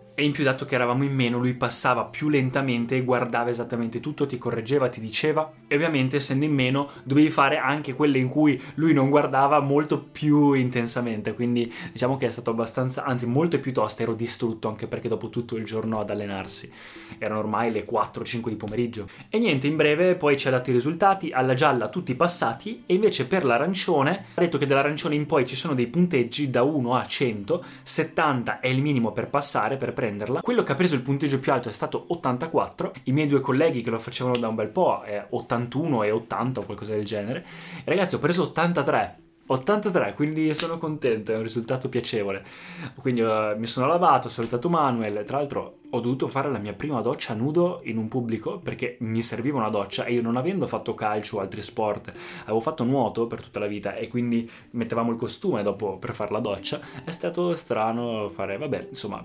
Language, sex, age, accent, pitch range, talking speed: Italian, male, 20-39, native, 115-145 Hz, 205 wpm